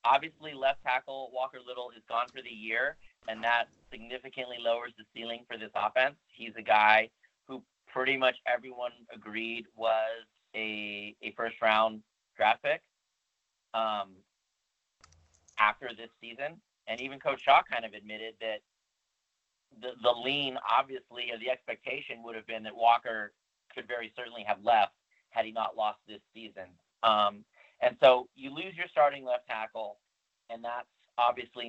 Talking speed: 155 wpm